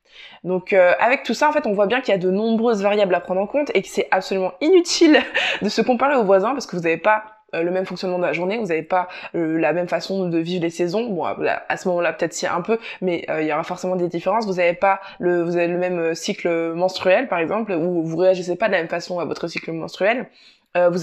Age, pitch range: 20-39, 180-210 Hz